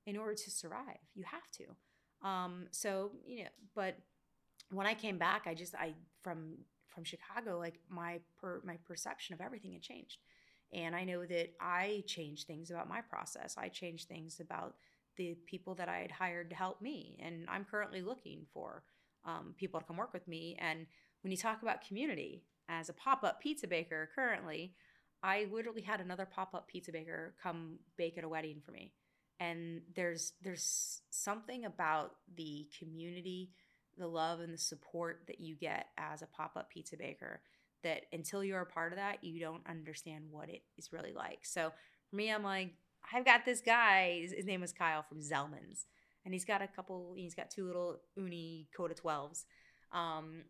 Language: English